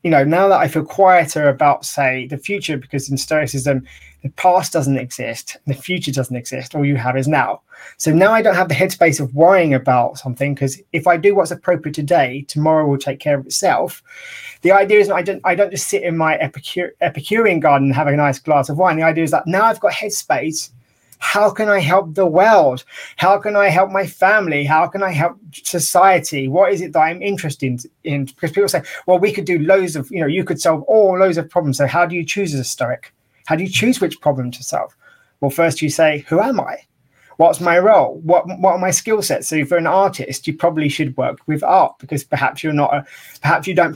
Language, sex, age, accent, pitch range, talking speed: English, male, 20-39, British, 140-185 Hz, 235 wpm